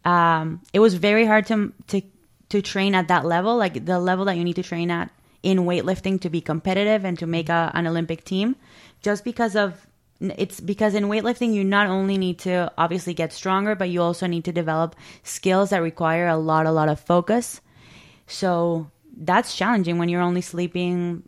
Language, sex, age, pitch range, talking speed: English, female, 20-39, 170-190 Hz, 195 wpm